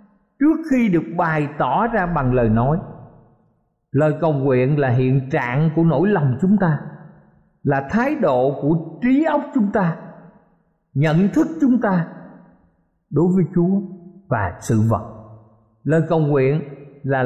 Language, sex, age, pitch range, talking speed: Vietnamese, male, 50-69, 145-215 Hz, 145 wpm